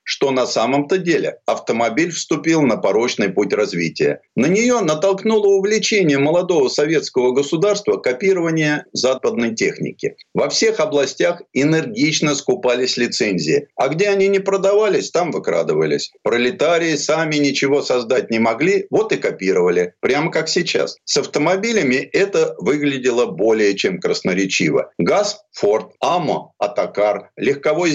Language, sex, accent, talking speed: Russian, male, native, 120 wpm